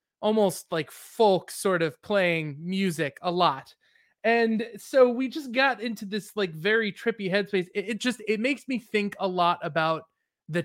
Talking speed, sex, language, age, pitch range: 175 wpm, male, English, 20-39, 170-225 Hz